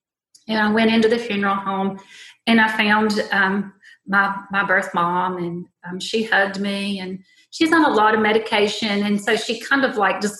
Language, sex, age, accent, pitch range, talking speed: English, female, 30-49, American, 185-210 Hz, 195 wpm